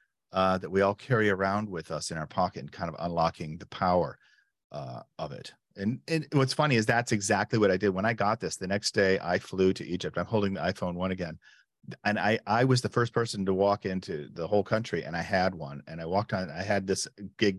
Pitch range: 90-115 Hz